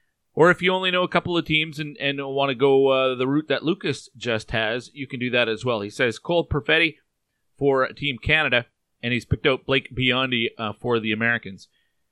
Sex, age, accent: male, 30-49, American